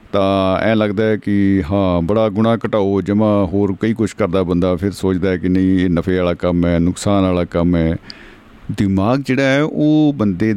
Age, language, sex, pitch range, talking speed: 50-69, Punjabi, male, 90-115 Hz, 195 wpm